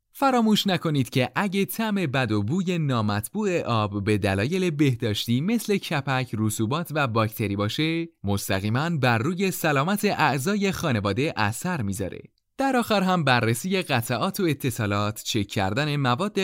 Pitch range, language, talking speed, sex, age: 110-180 Hz, Persian, 135 wpm, male, 30-49